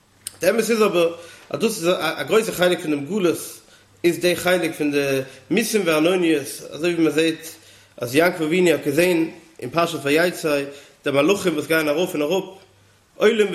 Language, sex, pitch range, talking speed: English, male, 155-195 Hz, 175 wpm